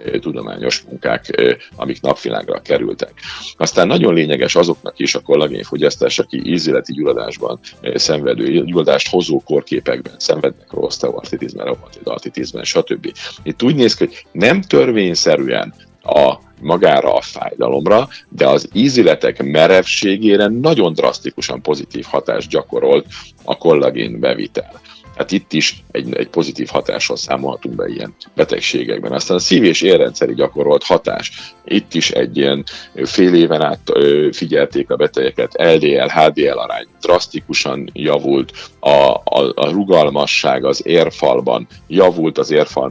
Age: 50-69